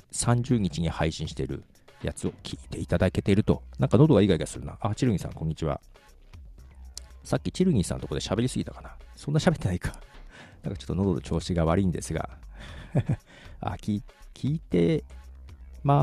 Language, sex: Japanese, male